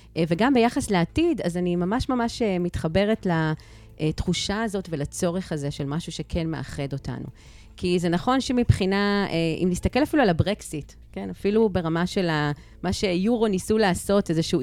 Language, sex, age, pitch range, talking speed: Hebrew, female, 30-49, 165-215 Hz, 150 wpm